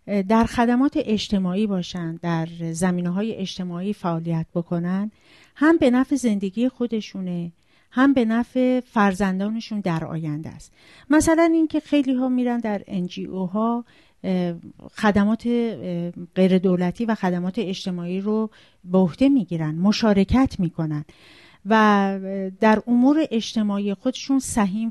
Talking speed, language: 110 wpm, Persian